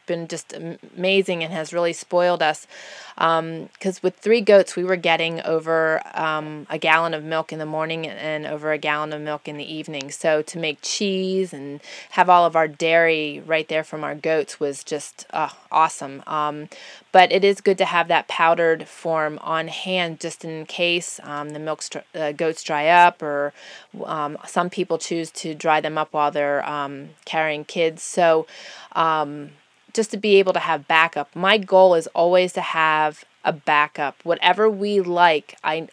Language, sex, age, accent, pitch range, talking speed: English, female, 20-39, American, 155-180 Hz, 185 wpm